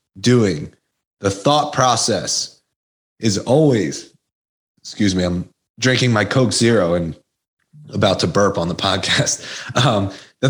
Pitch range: 105-145 Hz